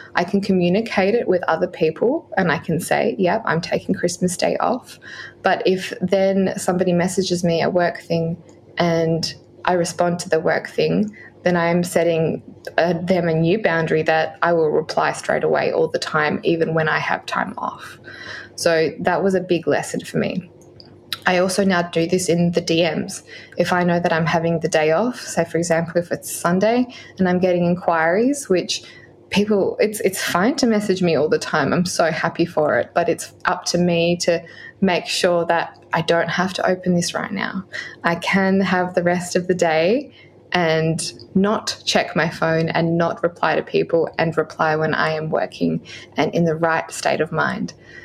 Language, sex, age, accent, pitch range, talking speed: English, female, 20-39, Australian, 165-185 Hz, 195 wpm